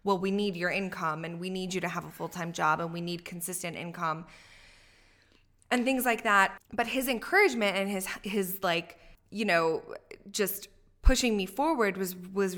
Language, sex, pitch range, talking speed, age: English, female, 175-195 Hz, 180 wpm, 20-39